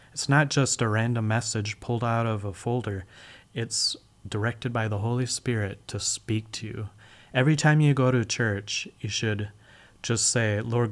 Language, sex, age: English, male, 30-49